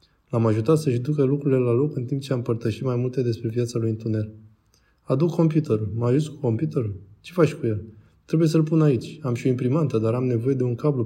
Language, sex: Romanian, male